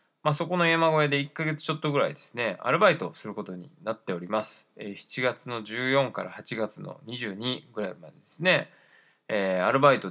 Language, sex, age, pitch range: Japanese, male, 20-39, 105-145 Hz